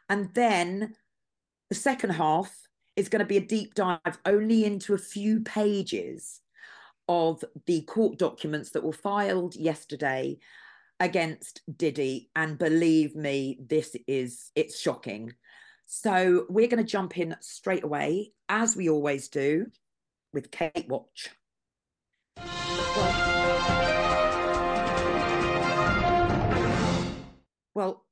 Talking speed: 105 wpm